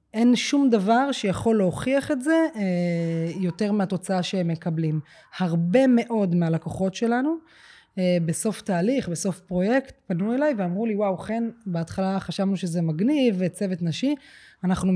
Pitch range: 170-215 Hz